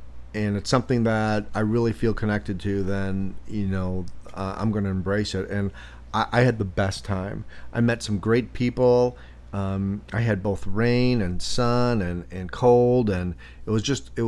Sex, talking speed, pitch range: male, 190 wpm, 95-115 Hz